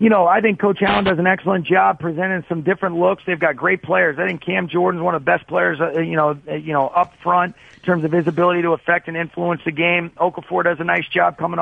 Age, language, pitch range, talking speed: 40-59, English, 165-190 Hz, 270 wpm